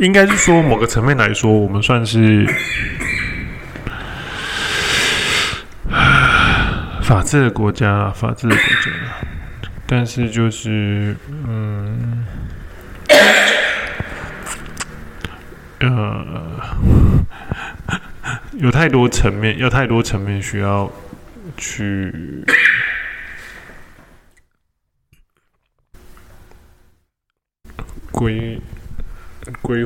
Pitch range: 100-125 Hz